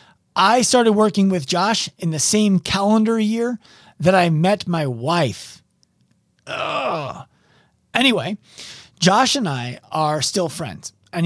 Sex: male